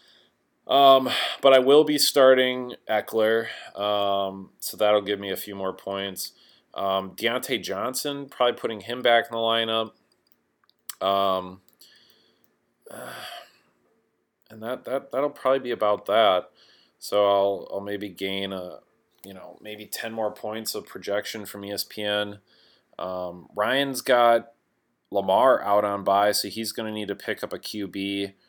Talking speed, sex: 145 wpm, male